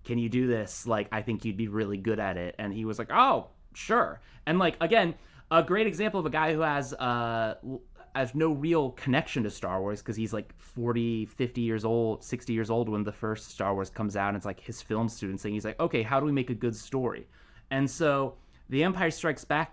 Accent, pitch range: American, 110-130 Hz